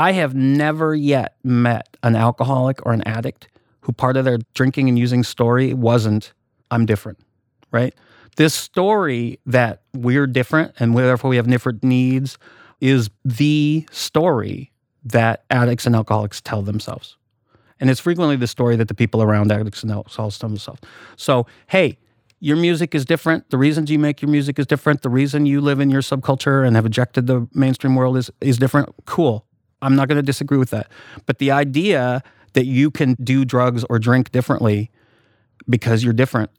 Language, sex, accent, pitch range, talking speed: English, male, American, 115-140 Hz, 175 wpm